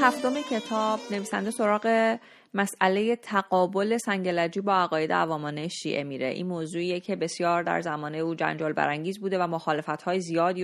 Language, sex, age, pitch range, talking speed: Persian, female, 30-49, 165-220 Hz, 140 wpm